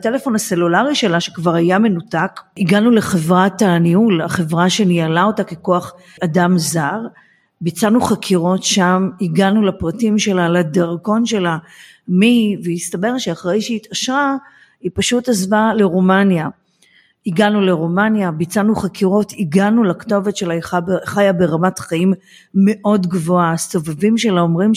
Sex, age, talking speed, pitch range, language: female, 40-59, 115 wpm, 175-215 Hz, Hebrew